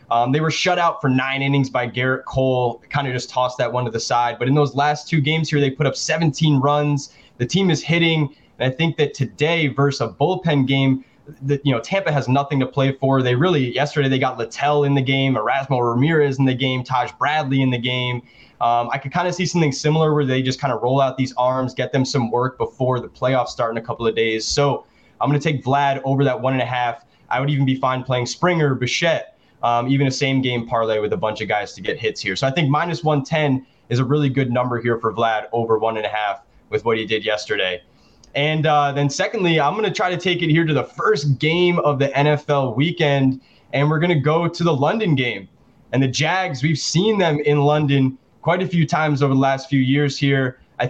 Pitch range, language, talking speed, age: 130-155 Hz, English, 245 wpm, 20-39